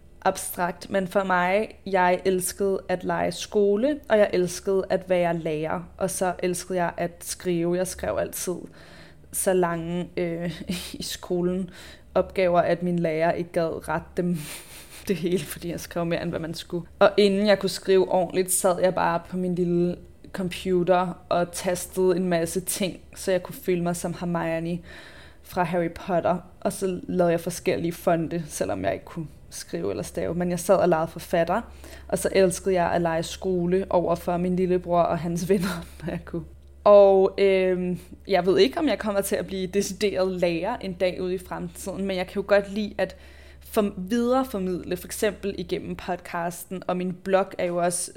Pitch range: 175-190 Hz